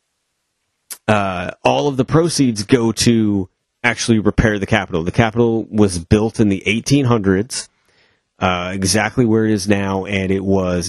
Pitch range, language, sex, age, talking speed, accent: 90-110 Hz, English, male, 30-49, 150 wpm, American